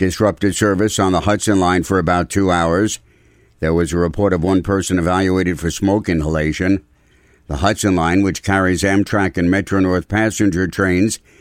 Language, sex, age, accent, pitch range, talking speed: English, male, 60-79, American, 90-110 Hz, 165 wpm